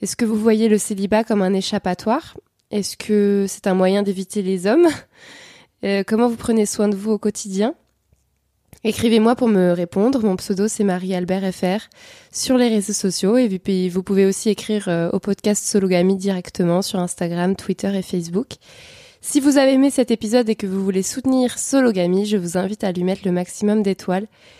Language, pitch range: French, 190-235 Hz